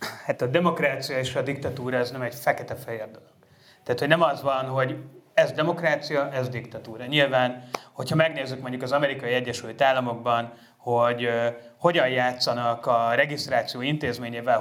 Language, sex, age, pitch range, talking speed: Hungarian, male, 30-49, 125-150 Hz, 145 wpm